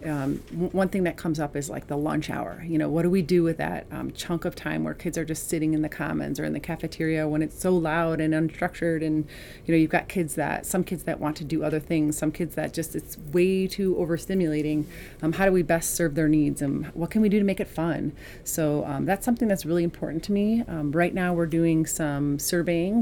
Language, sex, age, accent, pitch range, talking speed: English, female, 30-49, American, 150-175 Hz, 255 wpm